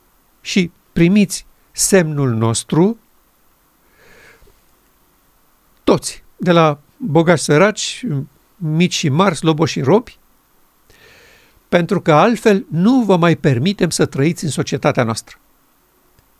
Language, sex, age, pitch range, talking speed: Romanian, male, 50-69, 150-195 Hz, 100 wpm